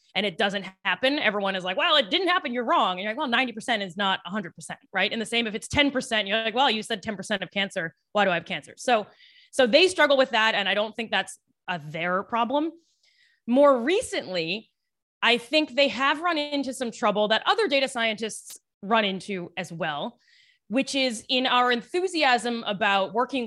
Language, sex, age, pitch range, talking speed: English, female, 20-39, 195-250 Hz, 200 wpm